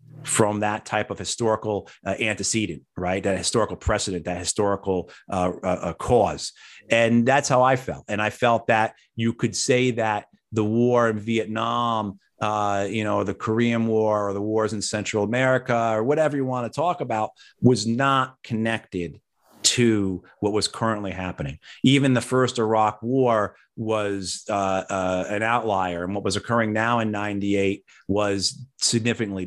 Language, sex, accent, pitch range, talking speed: English, male, American, 100-120 Hz, 160 wpm